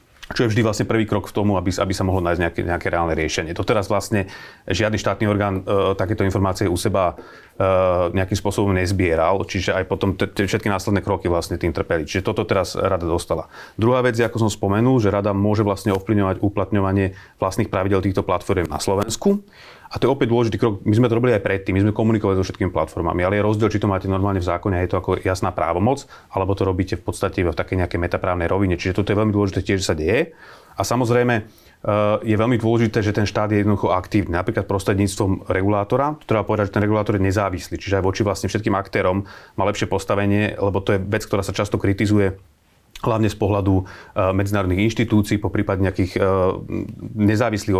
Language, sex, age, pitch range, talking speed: Slovak, male, 30-49, 95-110 Hz, 205 wpm